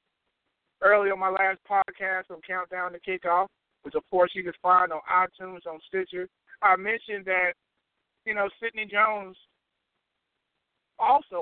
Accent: American